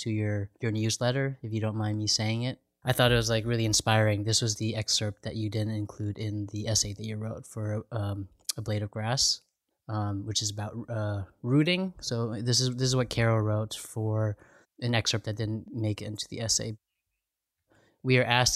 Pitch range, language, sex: 105-115 Hz, English, male